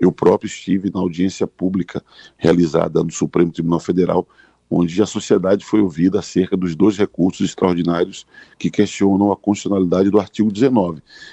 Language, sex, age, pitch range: Portuguese, male, 50-69, 90-110 Hz